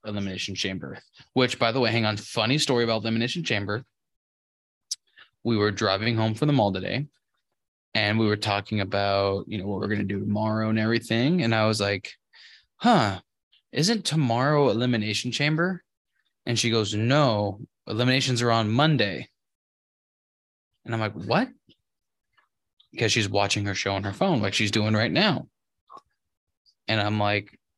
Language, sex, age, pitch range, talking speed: English, male, 20-39, 105-145 Hz, 160 wpm